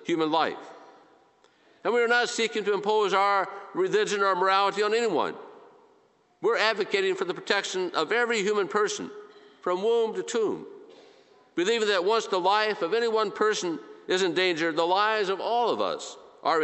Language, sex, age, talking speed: English, male, 50-69, 175 wpm